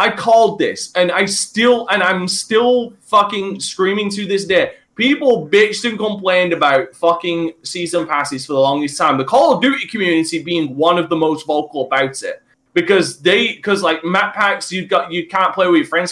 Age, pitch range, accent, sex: 20-39, 175-225 Hz, British, male